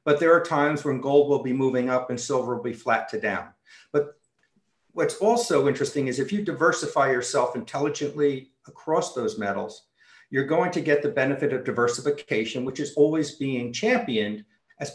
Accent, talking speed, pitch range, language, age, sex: American, 175 wpm, 130-170 Hz, English, 50-69, male